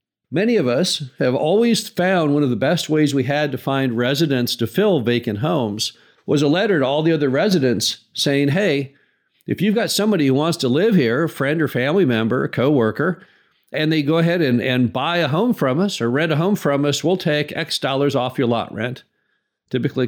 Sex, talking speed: male, 215 wpm